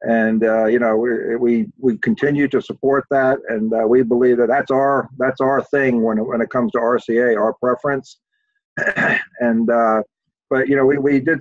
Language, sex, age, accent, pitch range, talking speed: English, male, 50-69, American, 120-145 Hz, 195 wpm